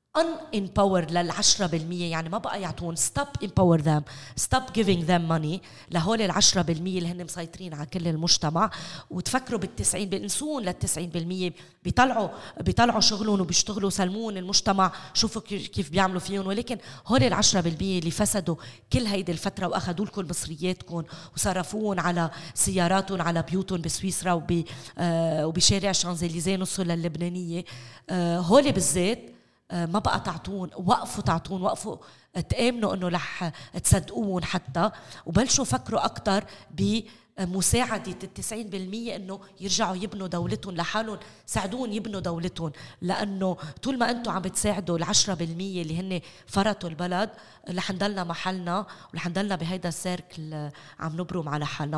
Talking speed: 130 wpm